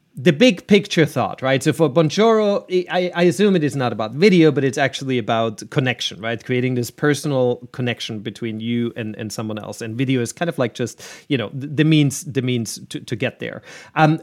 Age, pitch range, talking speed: 30-49, 120-165 Hz, 205 wpm